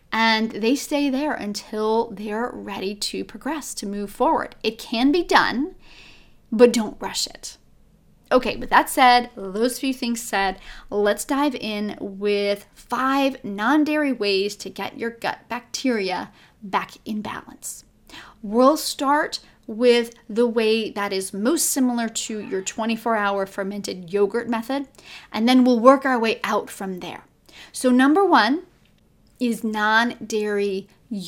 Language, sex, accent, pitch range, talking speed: English, female, American, 205-260 Hz, 140 wpm